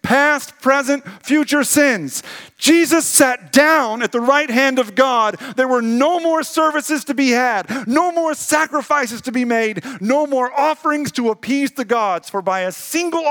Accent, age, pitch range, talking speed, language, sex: American, 40-59, 155-260 Hz, 170 wpm, English, male